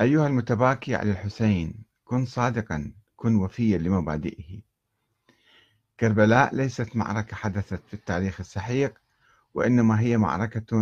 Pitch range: 105-120 Hz